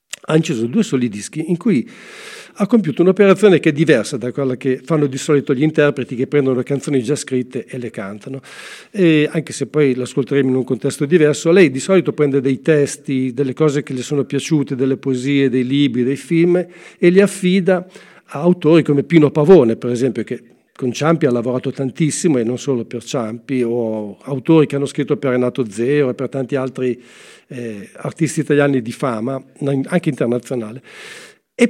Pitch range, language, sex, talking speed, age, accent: 130-160 Hz, Italian, male, 185 wpm, 50-69, native